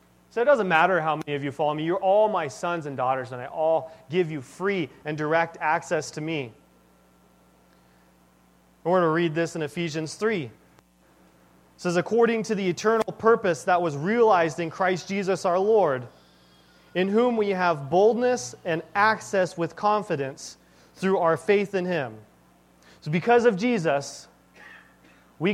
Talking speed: 160 wpm